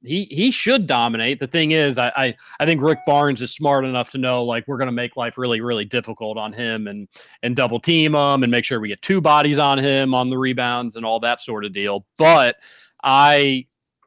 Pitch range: 120-145 Hz